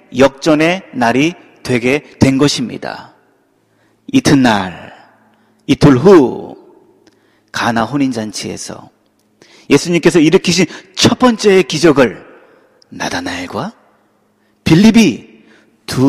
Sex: male